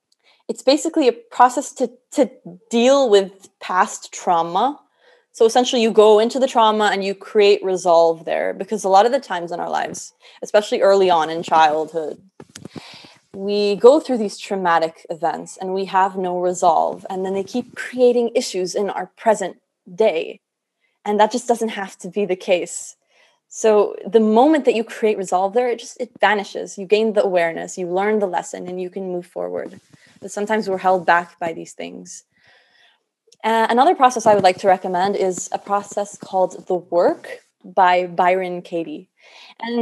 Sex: female